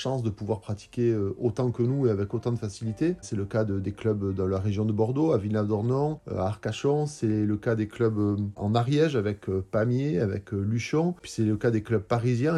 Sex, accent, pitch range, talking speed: male, French, 110-125 Hz, 220 wpm